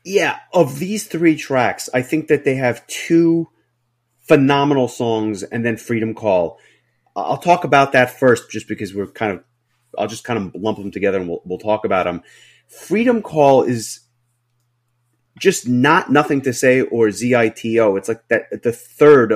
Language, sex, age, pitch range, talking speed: English, male, 30-49, 110-140 Hz, 170 wpm